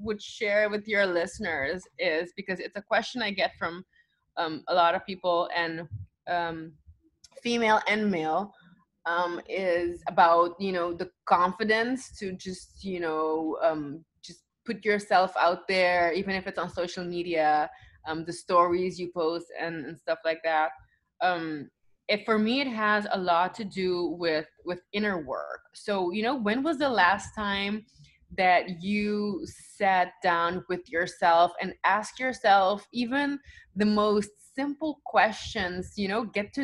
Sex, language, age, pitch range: female, English, 20-39, 175-220 Hz